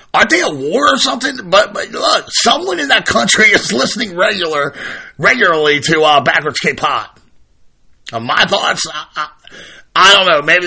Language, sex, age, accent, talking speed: English, male, 50-69, American, 170 wpm